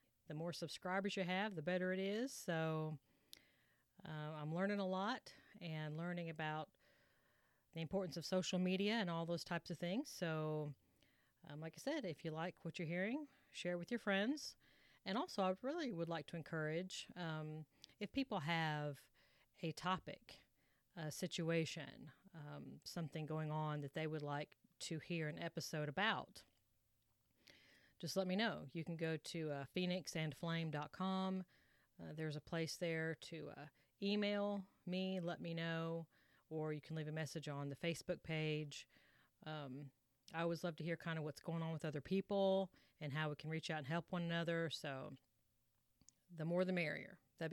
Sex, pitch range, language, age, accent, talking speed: female, 155-185 Hz, English, 40-59, American, 170 wpm